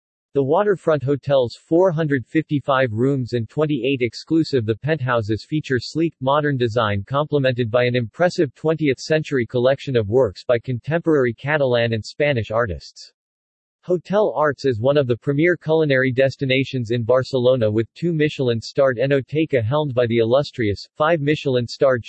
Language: English